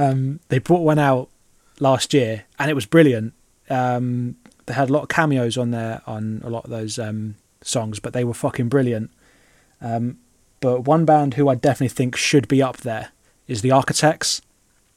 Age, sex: 20-39, male